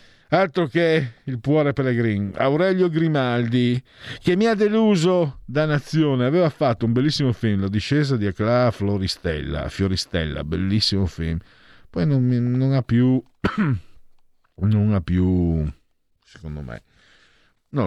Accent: native